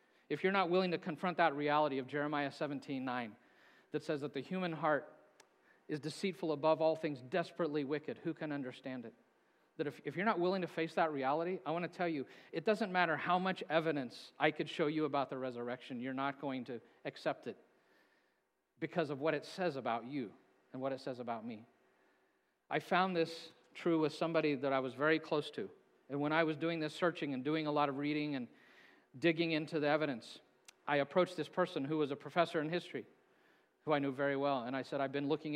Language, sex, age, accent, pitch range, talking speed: English, male, 40-59, American, 135-160 Hz, 215 wpm